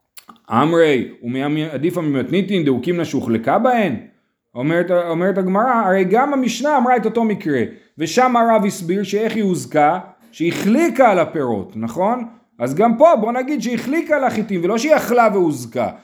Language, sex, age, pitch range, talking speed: Hebrew, male, 30-49, 145-225 Hz, 155 wpm